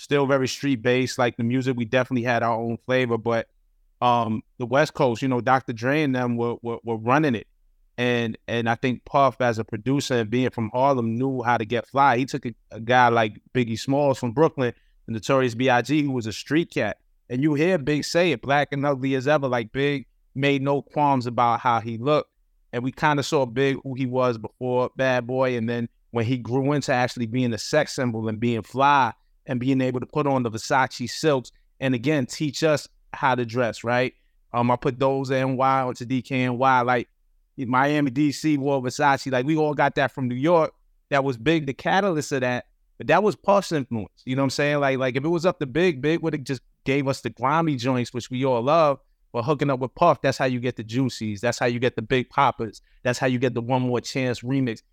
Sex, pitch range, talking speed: male, 120-140 Hz, 235 wpm